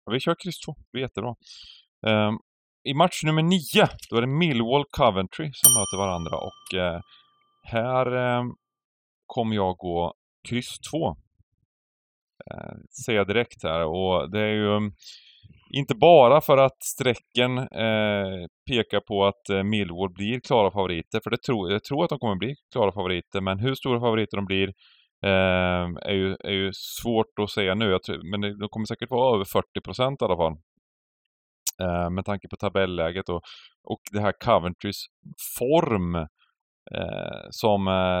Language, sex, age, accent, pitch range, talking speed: Swedish, male, 30-49, native, 95-125 Hz, 160 wpm